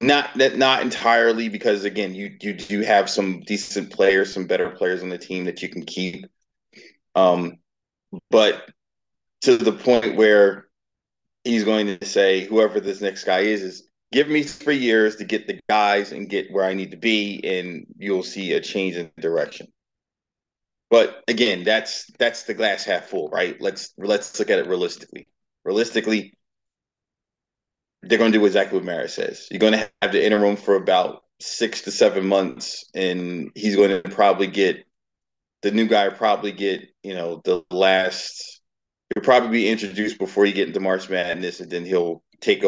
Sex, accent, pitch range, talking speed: male, American, 95-120 Hz, 180 wpm